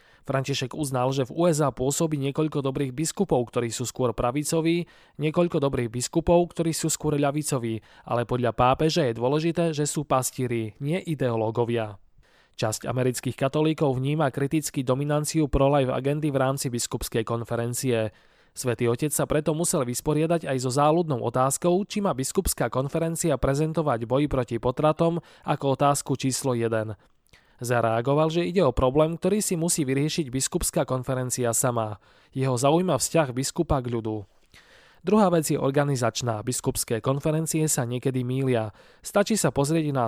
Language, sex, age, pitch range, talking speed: Slovak, male, 20-39, 125-160 Hz, 140 wpm